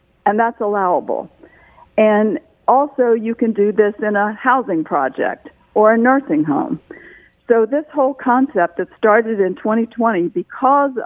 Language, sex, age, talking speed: English, female, 60-79, 140 wpm